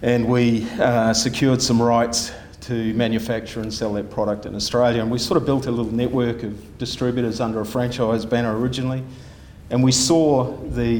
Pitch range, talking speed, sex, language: 105-120 Hz, 180 wpm, male, English